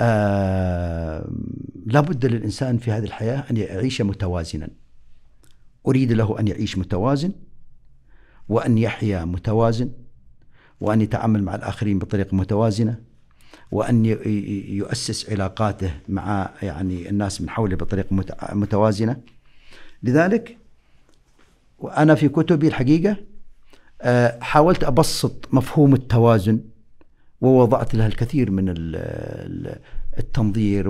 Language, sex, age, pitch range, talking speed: Arabic, male, 50-69, 95-125 Hz, 95 wpm